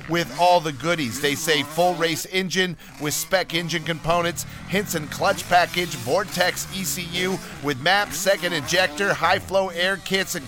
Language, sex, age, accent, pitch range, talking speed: English, male, 40-59, American, 155-190 Hz, 155 wpm